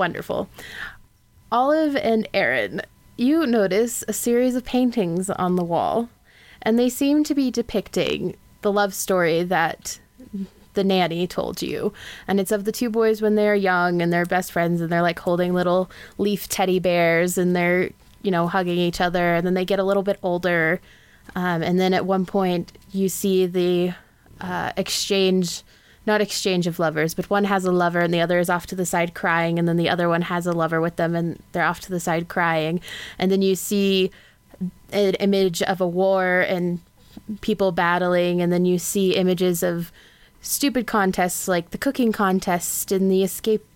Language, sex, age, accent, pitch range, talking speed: English, female, 20-39, American, 175-205 Hz, 185 wpm